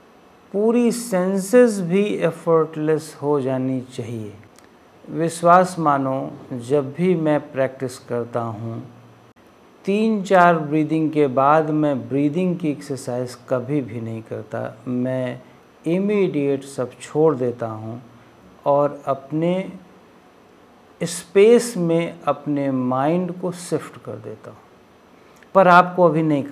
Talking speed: 110 wpm